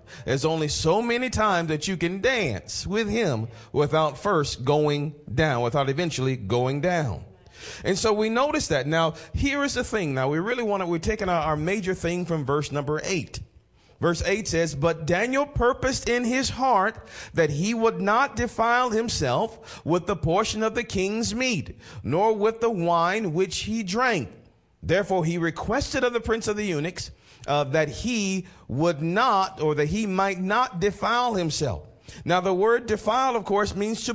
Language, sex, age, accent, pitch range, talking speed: English, male, 40-59, American, 160-225 Hz, 175 wpm